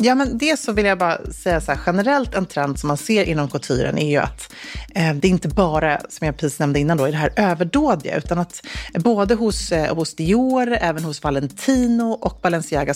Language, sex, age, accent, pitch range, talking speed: Swedish, female, 30-49, native, 150-195 Hz, 220 wpm